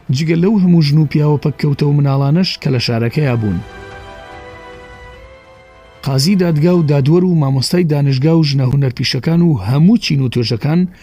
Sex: male